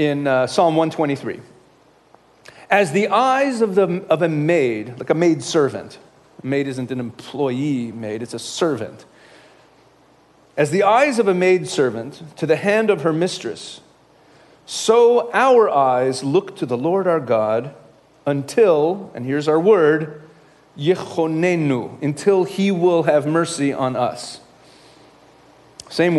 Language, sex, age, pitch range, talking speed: English, male, 40-59, 130-170 Hz, 140 wpm